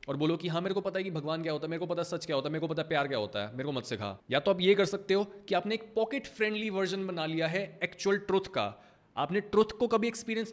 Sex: male